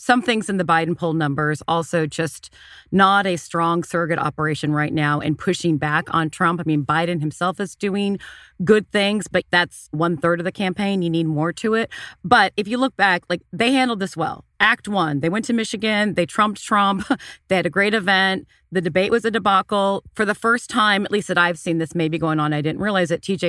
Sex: female